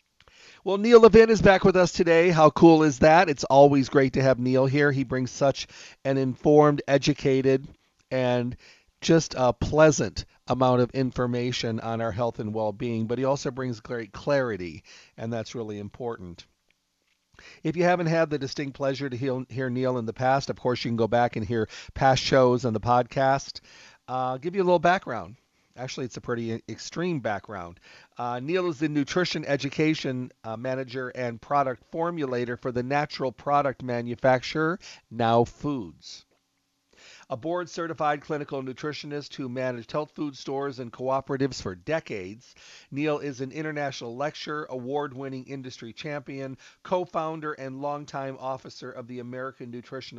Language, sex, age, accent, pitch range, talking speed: English, male, 40-59, American, 120-150 Hz, 160 wpm